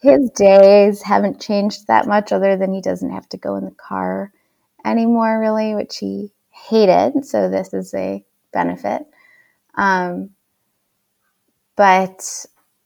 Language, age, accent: English, 20-39, American